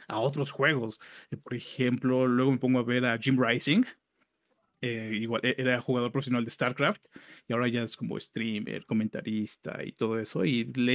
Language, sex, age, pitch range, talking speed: Spanish, male, 30-49, 130-175 Hz, 175 wpm